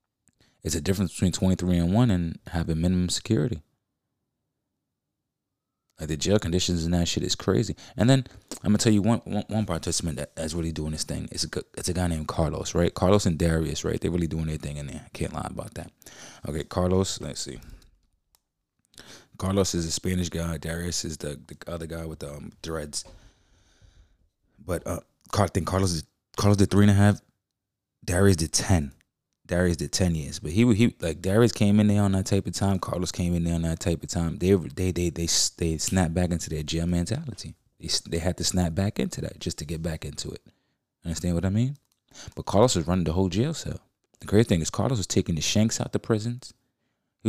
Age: 20-39